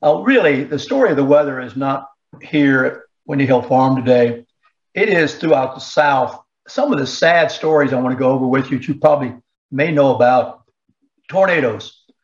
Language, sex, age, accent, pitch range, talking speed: English, male, 60-79, American, 125-145 Hz, 190 wpm